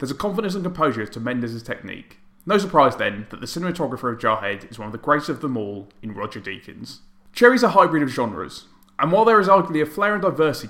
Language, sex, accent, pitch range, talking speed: English, male, British, 115-195 Hz, 230 wpm